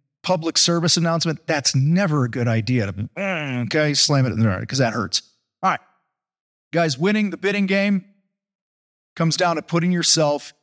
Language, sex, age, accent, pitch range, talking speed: English, male, 40-59, American, 140-170 Hz, 170 wpm